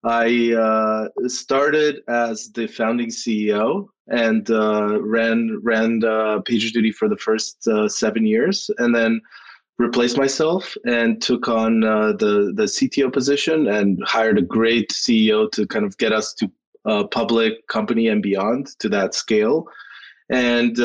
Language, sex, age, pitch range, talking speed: English, male, 20-39, 110-125 Hz, 155 wpm